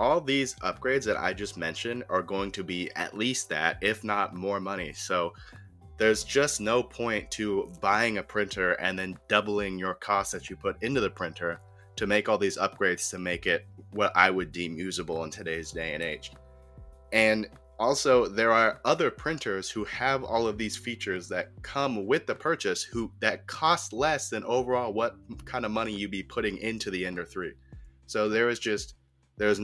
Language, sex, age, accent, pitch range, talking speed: English, male, 20-39, American, 85-110 Hz, 190 wpm